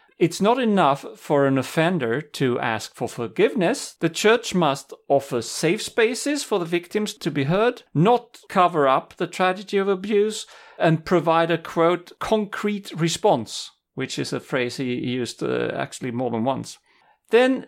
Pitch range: 135-220 Hz